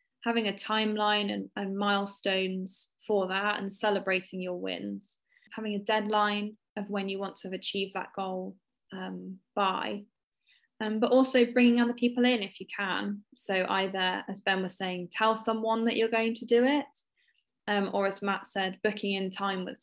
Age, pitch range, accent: 10-29, 190-225 Hz, British